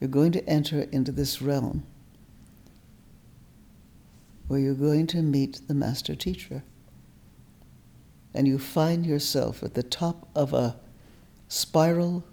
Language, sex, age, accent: English, female, 60-79, American